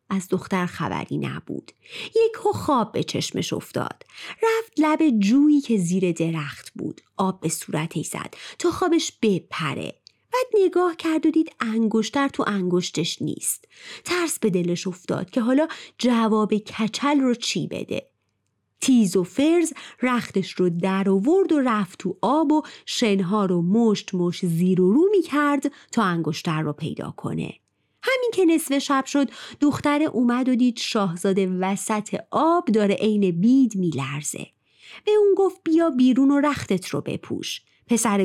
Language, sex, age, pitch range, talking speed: Persian, female, 30-49, 185-285 Hz, 150 wpm